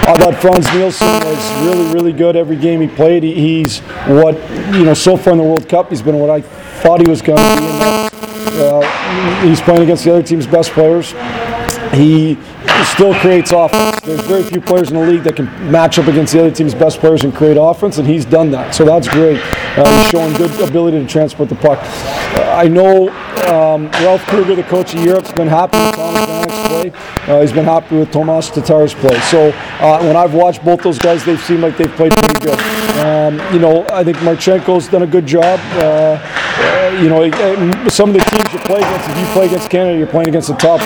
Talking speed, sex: 220 wpm, male